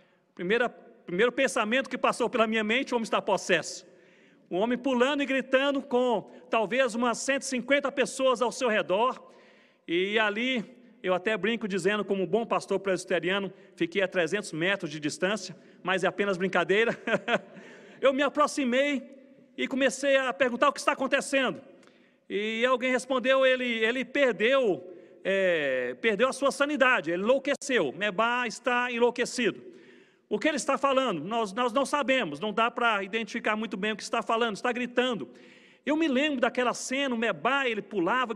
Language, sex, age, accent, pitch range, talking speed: Portuguese, male, 40-59, Brazilian, 215-260 Hz, 160 wpm